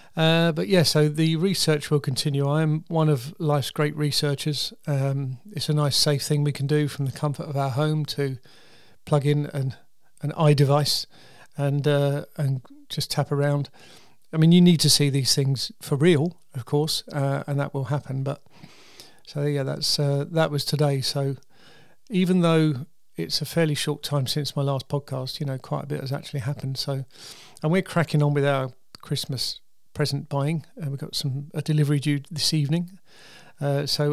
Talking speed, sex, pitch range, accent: 195 wpm, male, 140-155 Hz, British